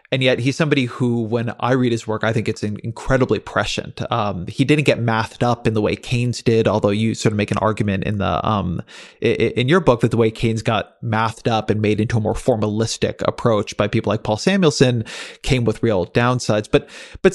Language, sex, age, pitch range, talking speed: English, male, 30-49, 110-145 Hz, 220 wpm